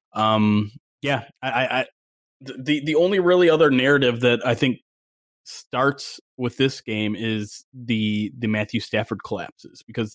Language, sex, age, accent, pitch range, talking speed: English, male, 20-39, American, 110-130 Hz, 140 wpm